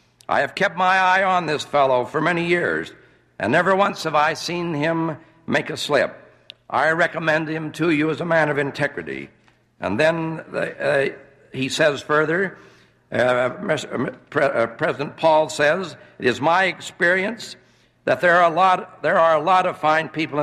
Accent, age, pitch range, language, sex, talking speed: American, 60-79, 140-170 Hz, English, male, 160 wpm